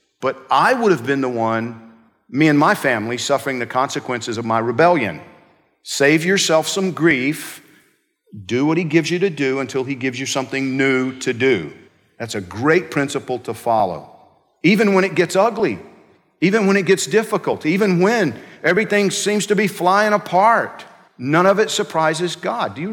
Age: 50-69